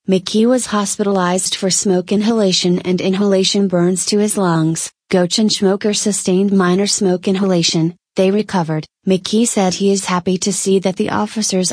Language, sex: English, female